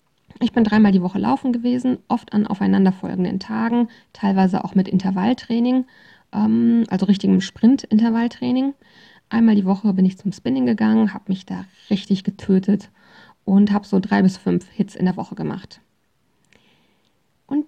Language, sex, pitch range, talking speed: German, female, 195-240 Hz, 145 wpm